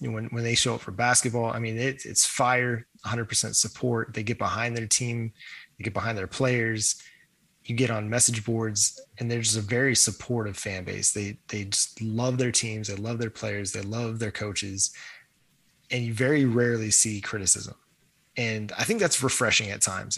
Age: 20-39